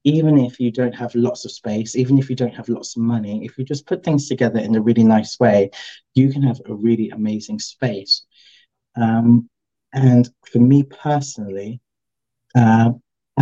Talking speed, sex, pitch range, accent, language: 180 wpm, male, 110-130 Hz, British, English